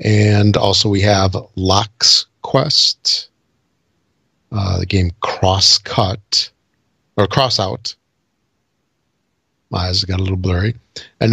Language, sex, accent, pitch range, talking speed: English, male, American, 95-115 Hz, 100 wpm